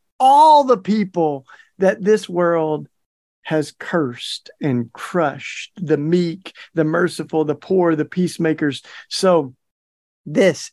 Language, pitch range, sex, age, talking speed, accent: English, 150-195 Hz, male, 50-69, 110 wpm, American